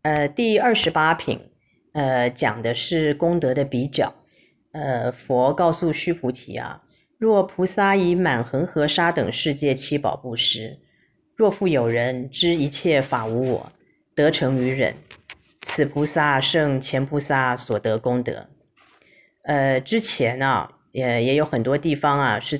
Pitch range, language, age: 125-160 Hz, Chinese, 30-49